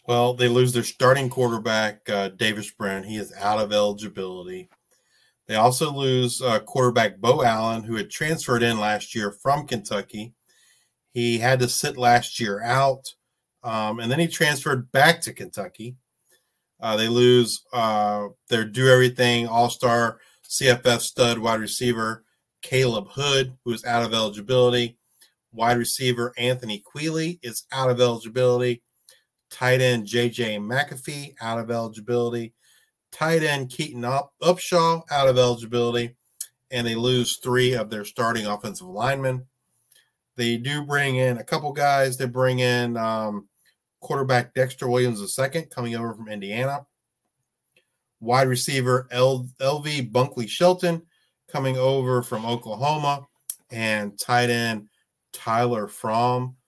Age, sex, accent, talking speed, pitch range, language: 30-49, male, American, 135 wpm, 115-130 Hz, English